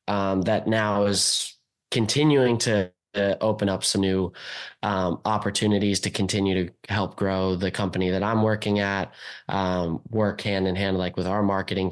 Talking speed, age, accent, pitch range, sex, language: 165 wpm, 20-39, American, 95-115 Hz, male, English